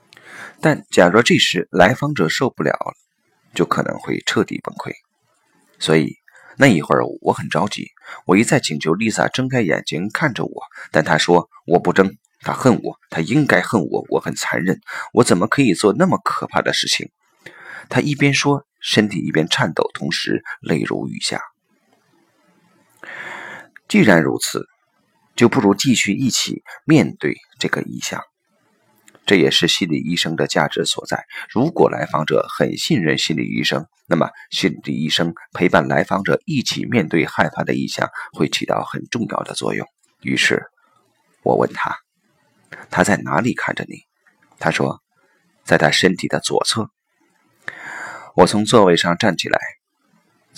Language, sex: Chinese, male